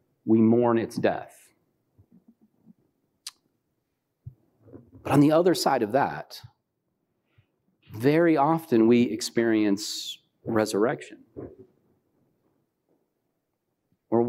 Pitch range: 115-140 Hz